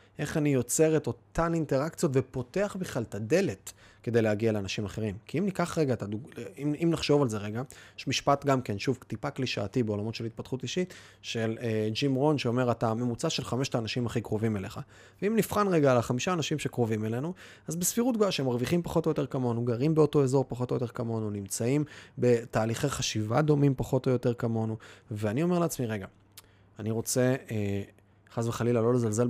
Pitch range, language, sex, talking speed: 110-140 Hz, Hebrew, male, 175 wpm